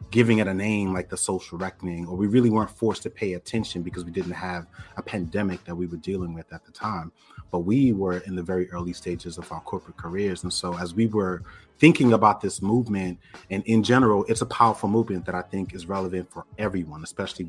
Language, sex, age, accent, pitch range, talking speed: English, male, 30-49, American, 90-105 Hz, 225 wpm